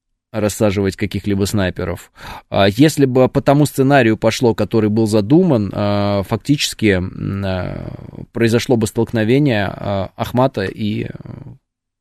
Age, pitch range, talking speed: 20-39, 100-130 Hz, 90 wpm